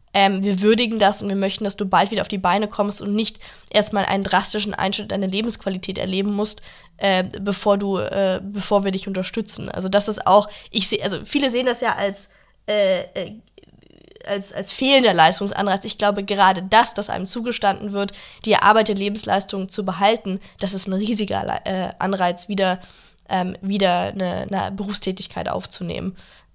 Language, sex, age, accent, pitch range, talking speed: German, female, 10-29, German, 190-205 Hz, 175 wpm